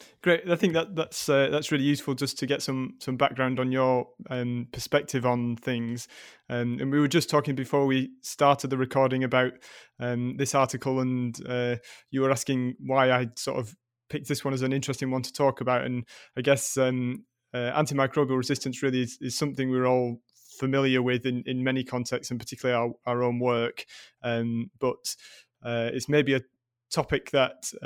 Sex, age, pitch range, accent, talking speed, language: male, 20-39, 120-135 Hz, British, 190 wpm, English